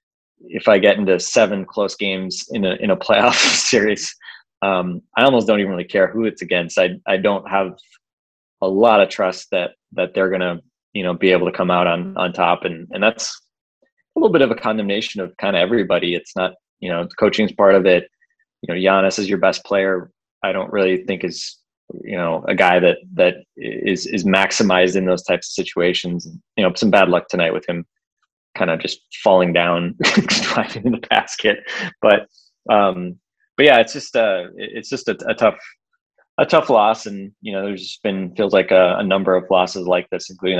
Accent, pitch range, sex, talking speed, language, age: American, 90-105 Hz, male, 210 wpm, English, 20-39